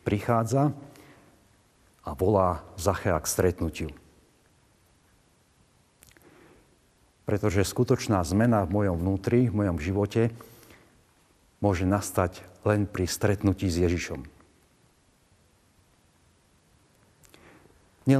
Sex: male